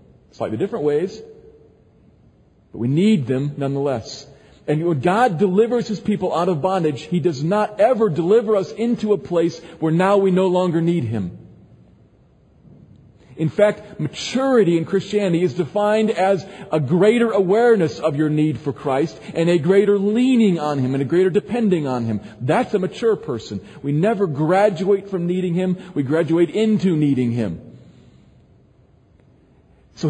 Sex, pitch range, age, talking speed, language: male, 150-205 Hz, 40-59, 155 wpm, English